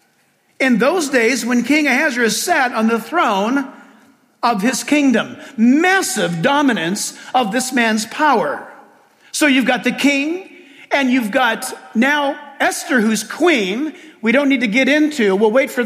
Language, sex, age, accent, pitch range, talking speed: English, male, 50-69, American, 220-300 Hz, 150 wpm